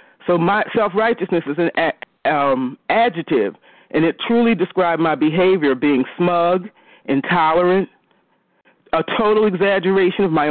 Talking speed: 115 wpm